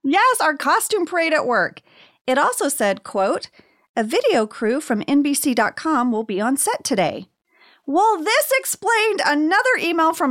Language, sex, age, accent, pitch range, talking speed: English, female, 40-59, American, 210-310 Hz, 150 wpm